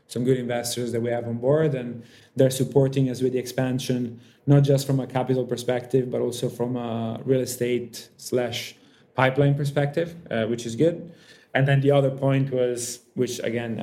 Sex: male